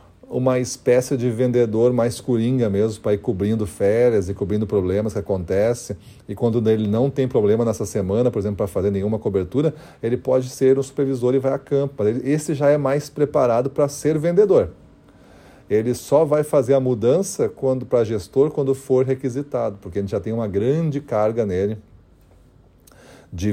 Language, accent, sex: Portuguese, Brazilian, male